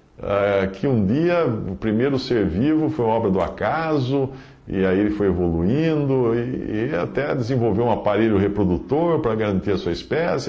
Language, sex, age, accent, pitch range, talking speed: Portuguese, male, 50-69, Brazilian, 90-130 Hz, 170 wpm